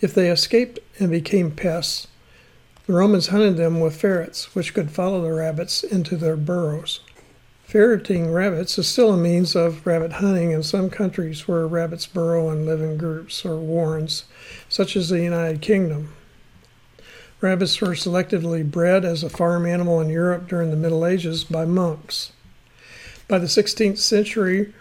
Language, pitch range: English, 165-190 Hz